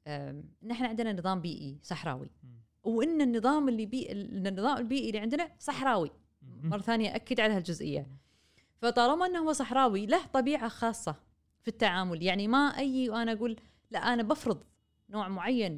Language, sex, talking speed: Arabic, female, 145 wpm